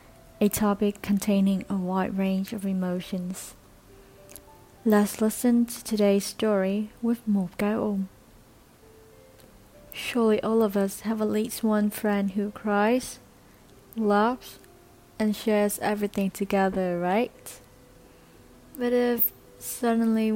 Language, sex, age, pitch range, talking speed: Vietnamese, female, 20-39, 190-215 Hz, 105 wpm